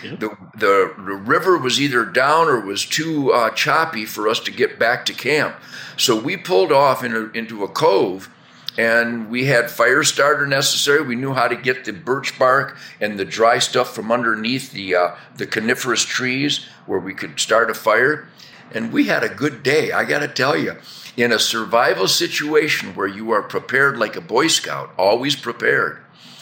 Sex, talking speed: male, 190 wpm